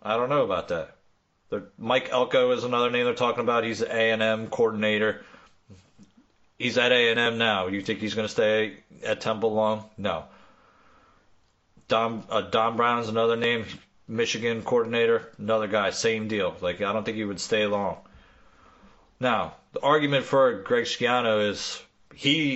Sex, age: male, 30-49